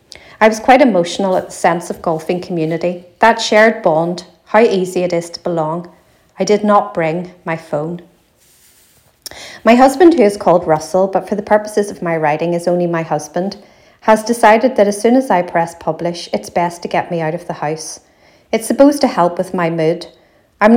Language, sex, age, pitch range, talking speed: English, female, 40-59, 170-210 Hz, 195 wpm